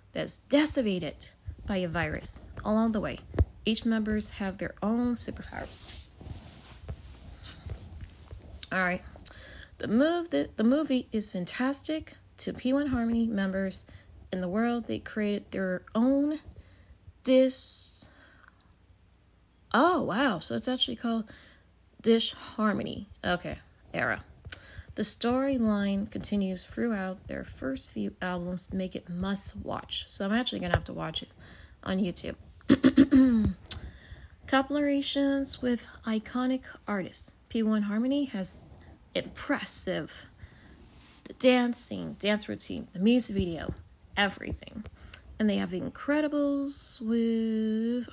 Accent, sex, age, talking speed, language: American, female, 20-39, 110 wpm, English